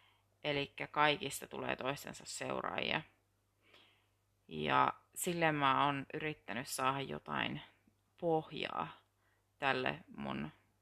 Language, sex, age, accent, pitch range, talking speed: Finnish, female, 30-49, native, 95-145 Hz, 85 wpm